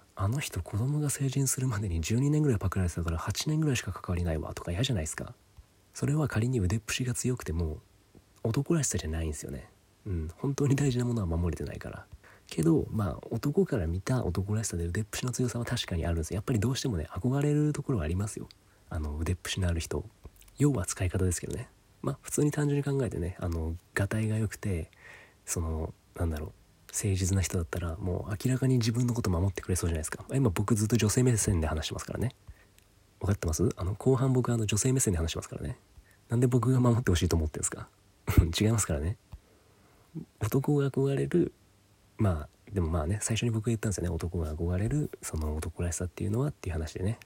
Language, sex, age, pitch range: Japanese, male, 30-49, 90-125 Hz